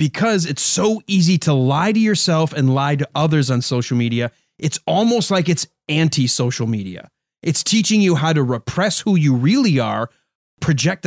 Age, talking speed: 30-49, 175 wpm